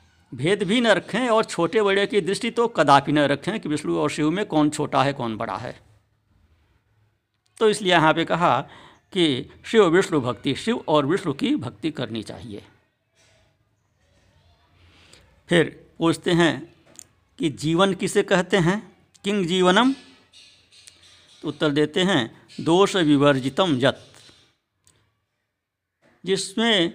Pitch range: 105-165 Hz